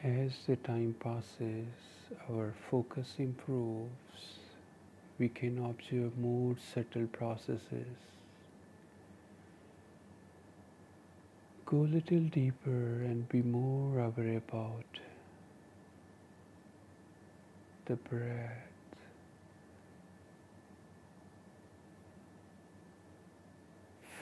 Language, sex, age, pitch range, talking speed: English, male, 50-69, 110-125 Hz, 60 wpm